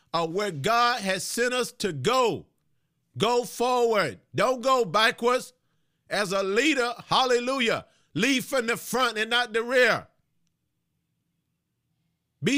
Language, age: English, 50-69